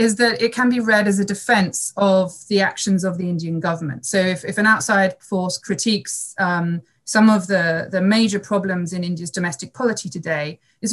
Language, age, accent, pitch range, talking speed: English, 30-49, British, 170-210 Hz, 200 wpm